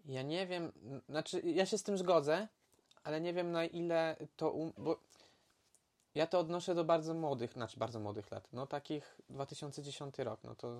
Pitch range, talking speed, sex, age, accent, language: 130-160 Hz, 185 wpm, male, 20-39, native, Polish